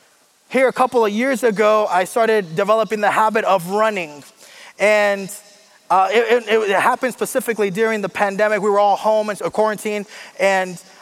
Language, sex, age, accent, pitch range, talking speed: English, male, 20-39, American, 195-240 Hz, 165 wpm